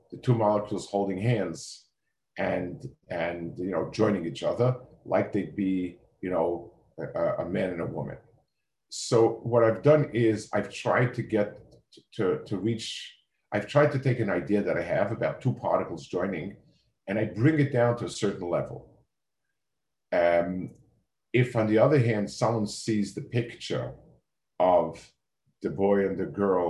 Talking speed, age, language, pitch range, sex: 165 wpm, 50-69, English, 100-120 Hz, male